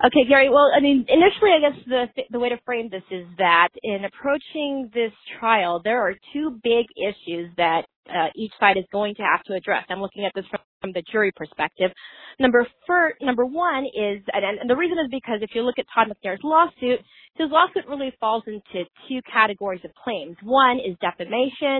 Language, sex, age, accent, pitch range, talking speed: English, female, 30-49, American, 195-260 Hz, 205 wpm